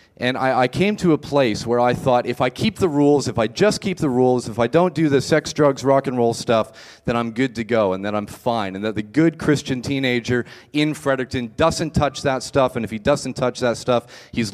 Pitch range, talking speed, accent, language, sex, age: 105-130 Hz, 250 wpm, American, English, male, 30-49